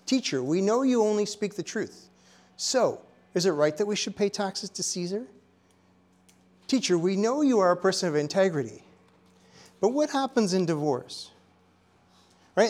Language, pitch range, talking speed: English, 155-215 Hz, 160 wpm